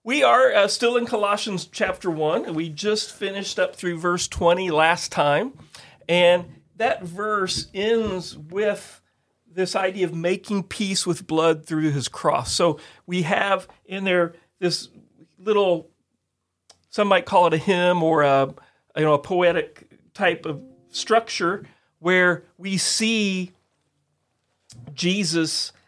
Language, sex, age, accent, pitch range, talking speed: English, male, 40-59, American, 160-200 Hz, 130 wpm